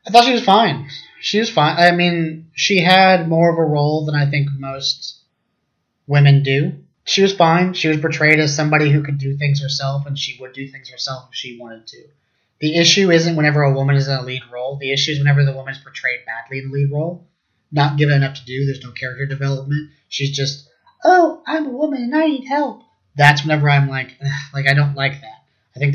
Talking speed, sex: 230 wpm, male